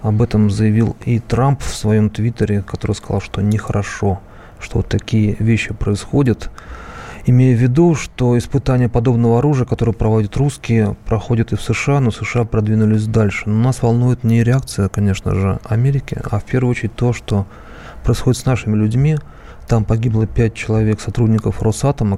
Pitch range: 105-120 Hz